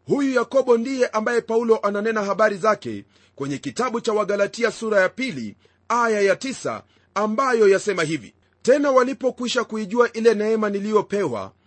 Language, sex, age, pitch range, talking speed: Swahili, male, 40-59, 210-250 Hz, 140 wpm